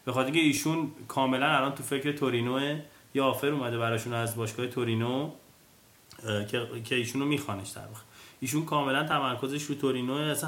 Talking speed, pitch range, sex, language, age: 160 wpm, 110-135 Hz, male, Persian, 30-49